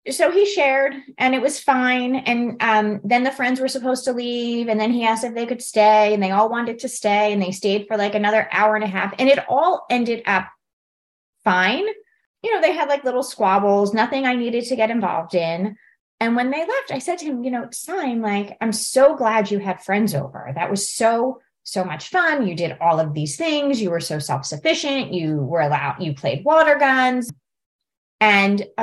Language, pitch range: English, 210-280 Hz